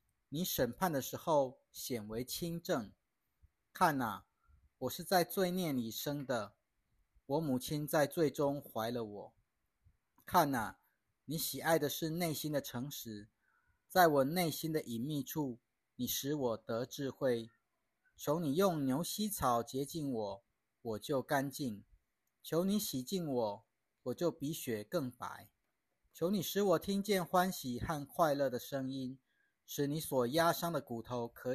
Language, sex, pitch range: Chinese, male, 120-165 Hz